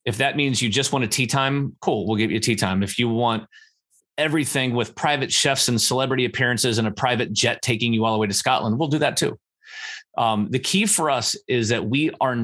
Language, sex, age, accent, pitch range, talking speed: English, male, 30-49, American, 110-140 Hz, 240 wpm